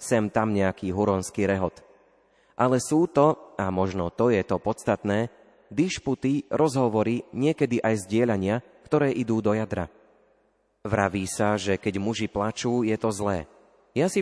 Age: 30-49